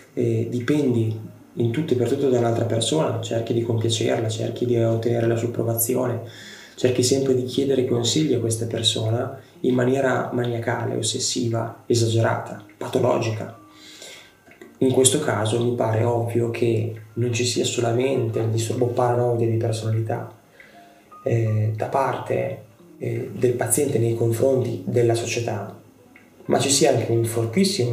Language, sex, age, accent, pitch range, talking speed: Italian, male, 20-39, native, 115-125 Hz, 140 wpm